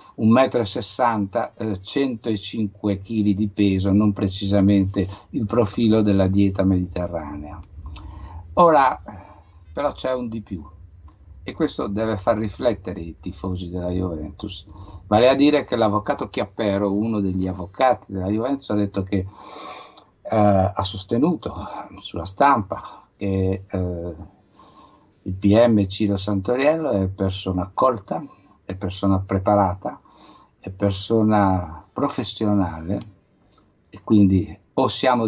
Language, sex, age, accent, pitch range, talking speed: Italian, male, 60-79, native, 95-110 Hz, 115 wpm